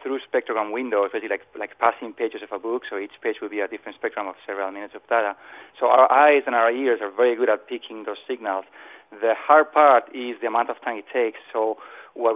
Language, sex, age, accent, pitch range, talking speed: English, male, 40-59, Spanish, 110-130 Hz, 235 wpm